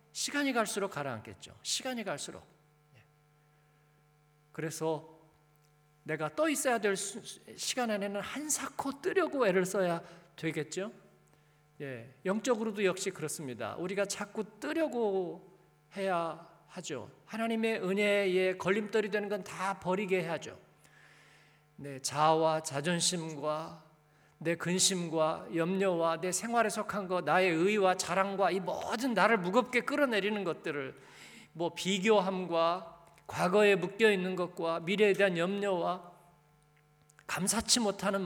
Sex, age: male, 50-69